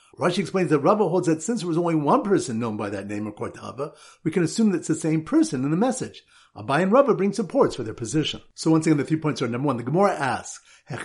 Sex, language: male, English